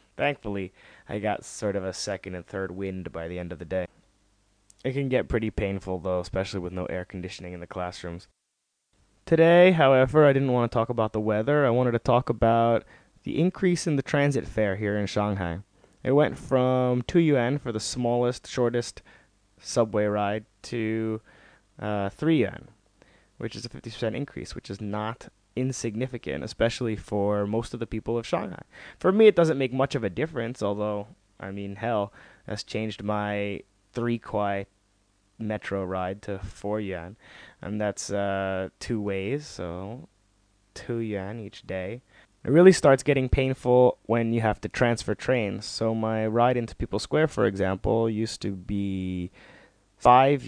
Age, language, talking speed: 20-39, English, 170 wpm